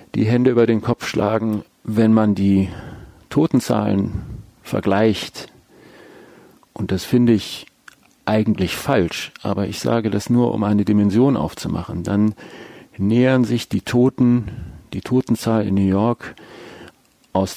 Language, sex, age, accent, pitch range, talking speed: German, male, 50-69, German, 100-120 Hz, 125 wpm